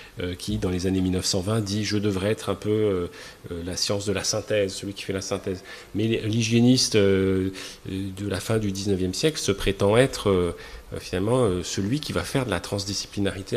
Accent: French